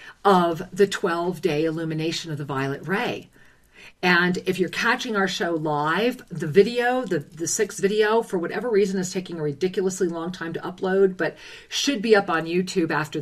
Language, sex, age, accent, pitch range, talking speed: English, female, 50-69, American, 155-210 Hz, 175 wpm